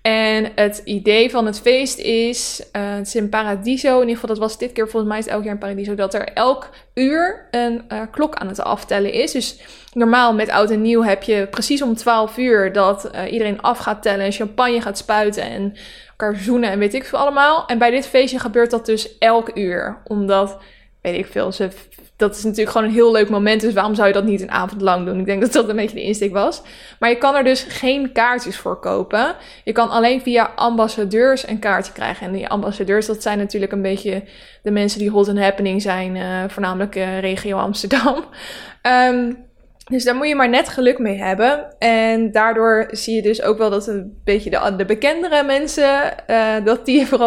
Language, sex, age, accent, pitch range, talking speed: Dutch, female, 20-39, Dutch, 205-245 Hz, 220 wpm